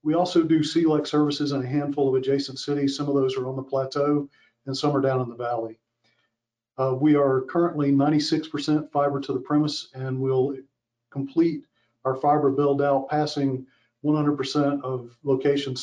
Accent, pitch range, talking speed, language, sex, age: American, 130-145 Hz, 170 wpm, English, male, 40-59